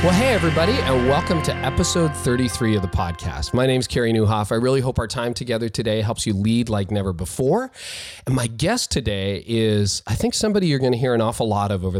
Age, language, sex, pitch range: 40-59, English, male, 100-130 Hz